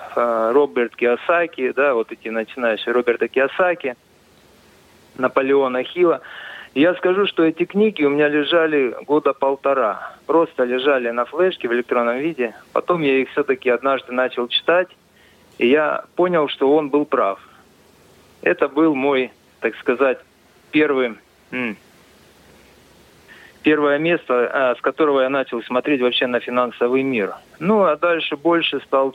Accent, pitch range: native, 125-160 Hz